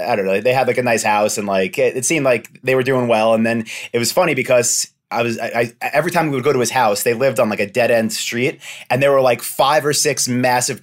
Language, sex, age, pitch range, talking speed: English, male, 30-49, 110-130 Hz, 295 wpm